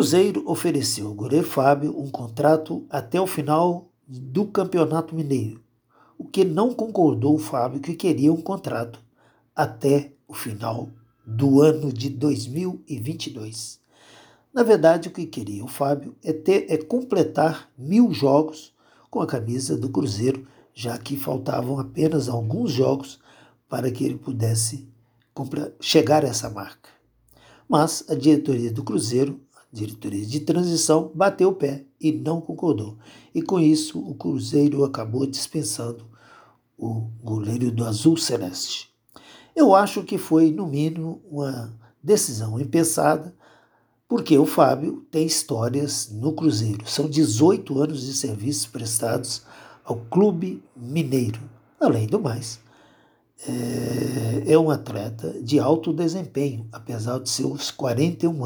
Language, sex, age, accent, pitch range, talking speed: Portuguese, male, 60-79, Brazilian, 120-160 Hz, 130 wpm